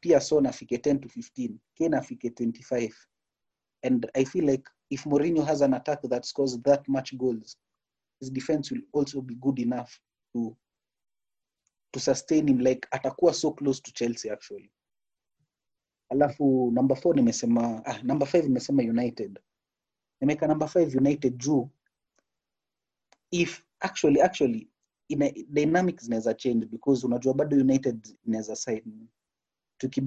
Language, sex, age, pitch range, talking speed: Swahili, male, 30-49, 120-150 Hz, 140 wpm